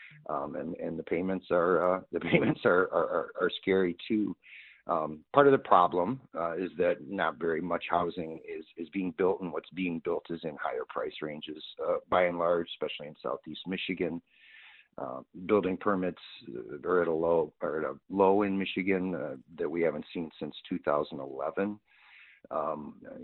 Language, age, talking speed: English, 50-69, 180 wpm